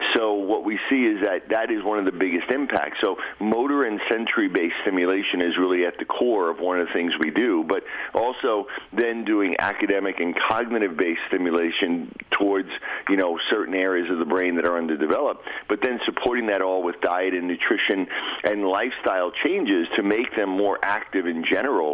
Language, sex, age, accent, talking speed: English, male, 50-69, American, 185 wpm